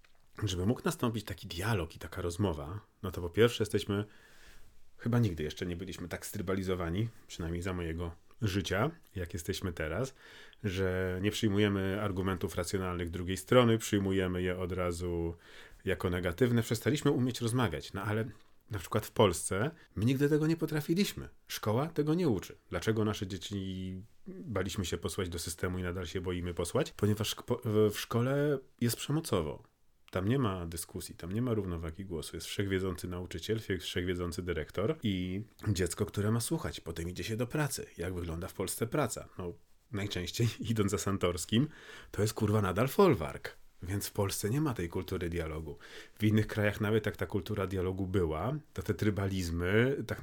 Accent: native